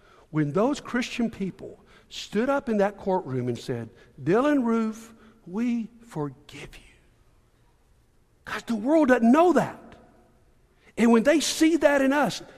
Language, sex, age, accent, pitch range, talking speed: English, male, 60-79, American, 195-280 Hz, 140 wpm